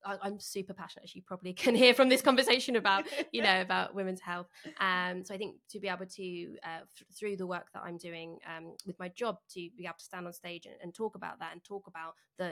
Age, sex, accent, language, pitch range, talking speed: 20-39, female, British, English, 170-190 Hz, 255 wpm